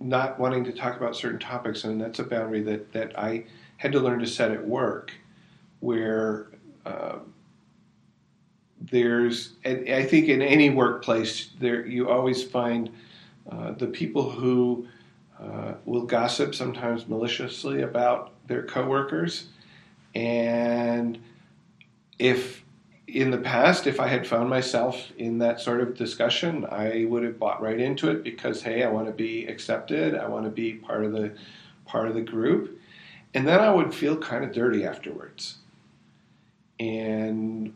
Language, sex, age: English, male, 50-69